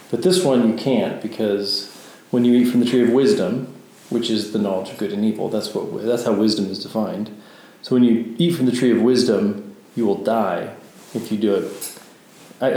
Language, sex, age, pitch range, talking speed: English, male, 40-59, 110-125 Hz, 215 wpm